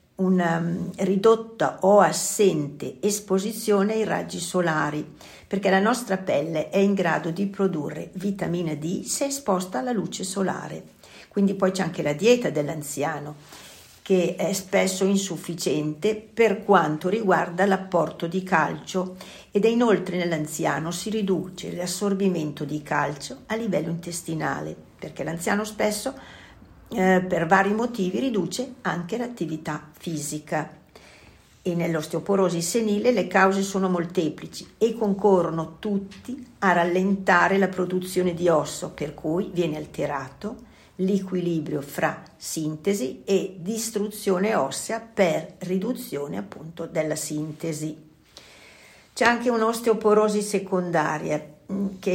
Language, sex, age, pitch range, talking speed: Italian, female, 50-69, 160-200 Hz, 115 wpm